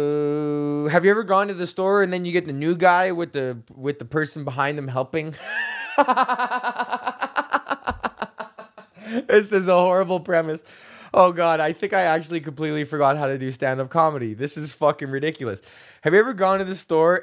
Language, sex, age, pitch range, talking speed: English, male, 20-39, 140-195 Hz, 180 wpm